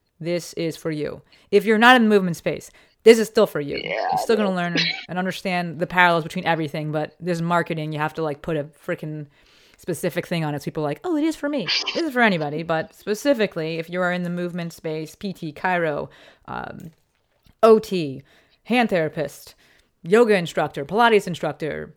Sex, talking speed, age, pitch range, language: female, 195 wpm, 30-49, 155-205 Hz, English